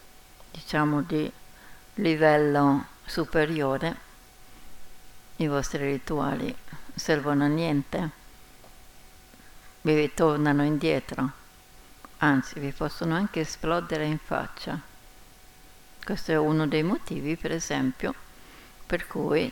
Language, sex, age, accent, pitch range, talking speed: Italian, female, 60-79, native, 145-165 Hz, 90 wpm